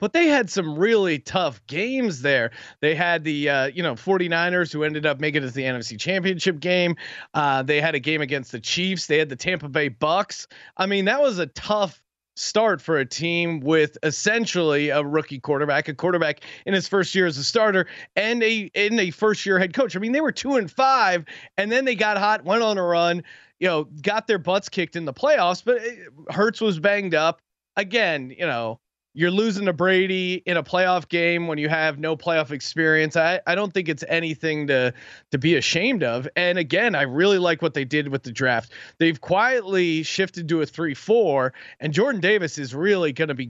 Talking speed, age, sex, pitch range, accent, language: 210 wpm, 30-49, male, 150-195 Hz, American, English